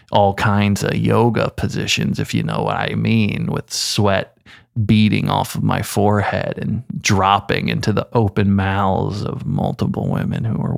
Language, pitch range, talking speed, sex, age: English, 100-120 Hz, 160 wpm, male, 20-39